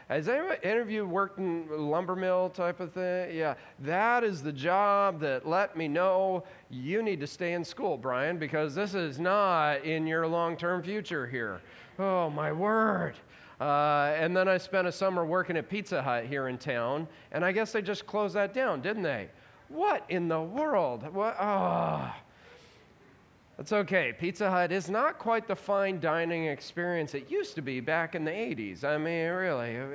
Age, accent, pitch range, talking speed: 40-59, American, 135-185 Hz, 190 wpm